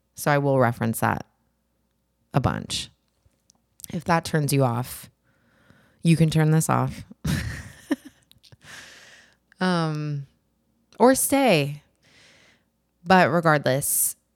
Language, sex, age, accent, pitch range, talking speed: English, female, 20-39, American, 120-165 Hz, 90 wpm